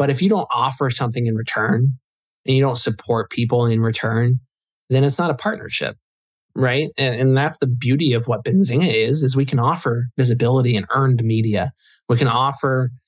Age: 20-39